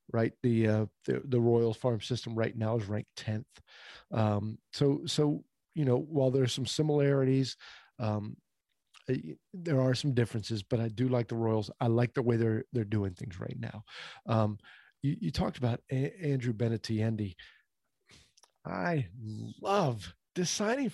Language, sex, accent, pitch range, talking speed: English, male, American, 115-165 Hz, 160 wpm